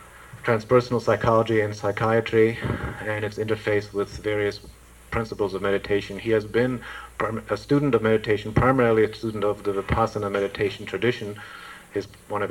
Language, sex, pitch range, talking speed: English, male, 95-105 Hz, 145 wpm